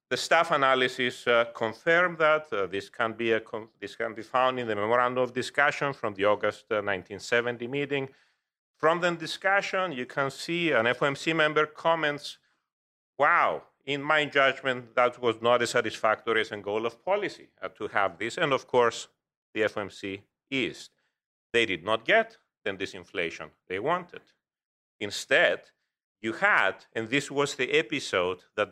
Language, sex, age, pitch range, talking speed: English, male, 40-59, 115-155 Hz, 160 wpm